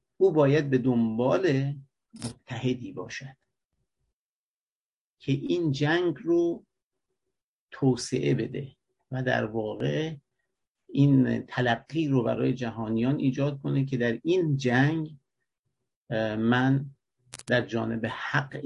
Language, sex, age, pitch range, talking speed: Persian, male, 50-69, 125-140 Hz, 95 wpm